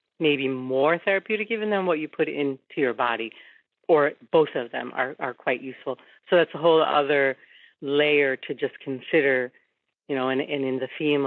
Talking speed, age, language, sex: 185 wpm, 40-59, English, female